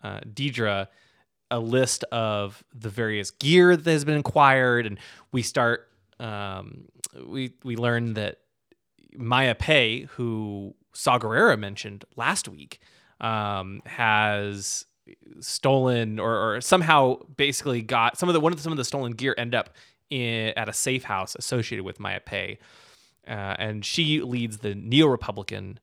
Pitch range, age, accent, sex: 105-130 Hz, 20-39, American, male